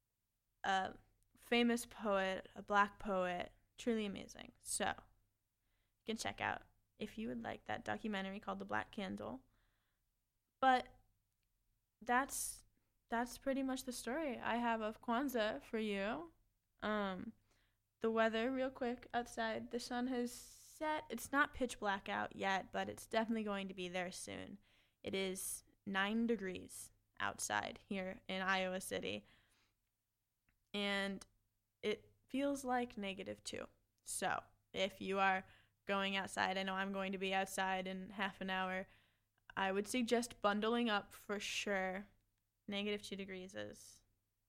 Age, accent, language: 10-29, American, English